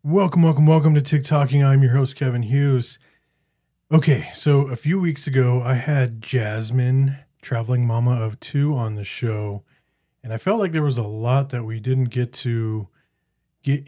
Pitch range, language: 115-140 Hz, English